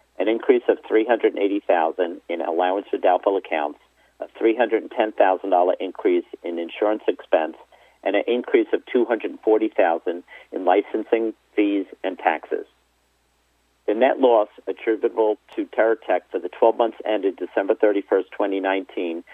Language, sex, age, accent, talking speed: English, male, 50-69, American, 120 wpm